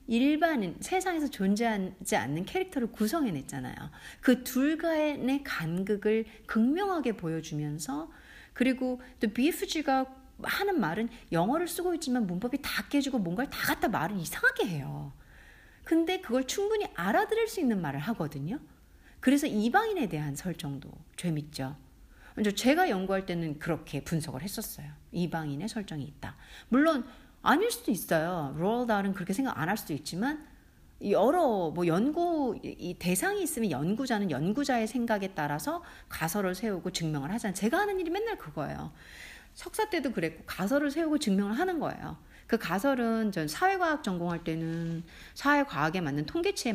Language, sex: Korean, female